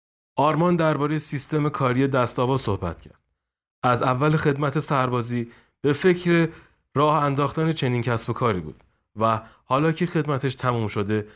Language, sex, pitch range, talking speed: Persian, male, 115-145 Hz, 135 wpm